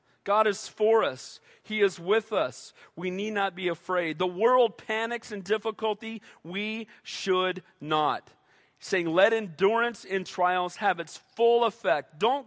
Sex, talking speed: male, 155 wpm